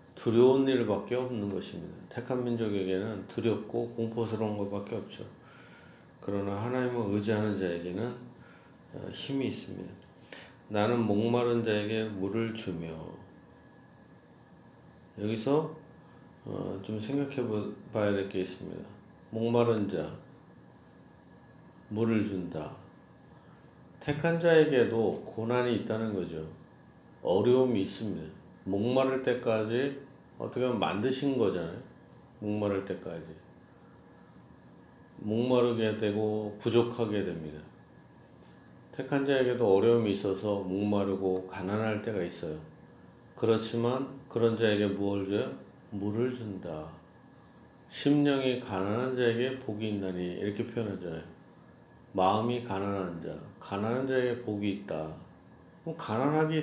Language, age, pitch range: Korean, 40-59, 95-125 Hz